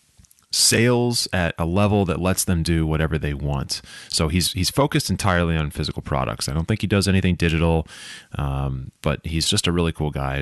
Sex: male